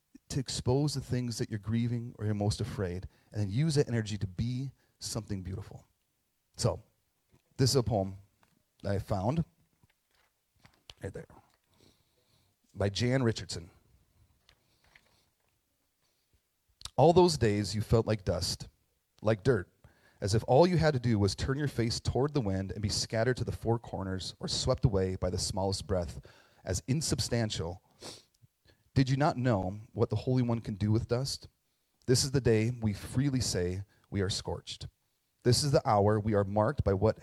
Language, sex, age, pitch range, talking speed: English, male, 30-49, 95-125 Hz, 165 wpm